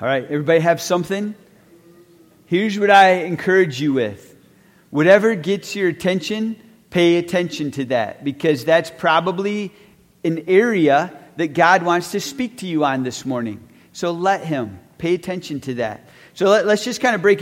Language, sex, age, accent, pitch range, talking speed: English, male, 40-59, American, 155-195 Hz, 160 wpm